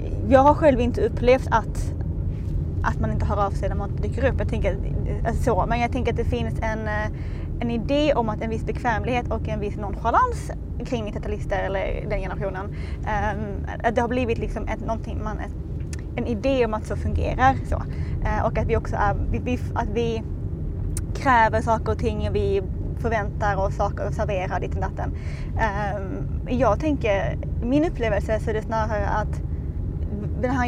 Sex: female